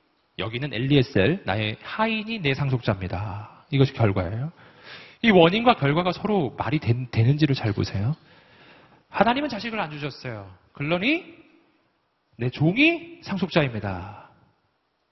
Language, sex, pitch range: Korean, male, 115-185 Hz